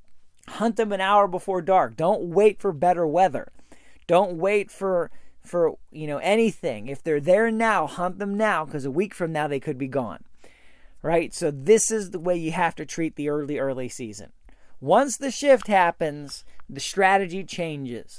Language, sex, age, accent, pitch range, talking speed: English, male, 40-59, American, 150-210 Hz, 180 wpm